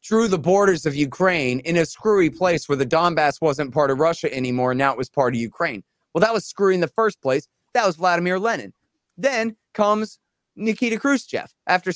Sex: male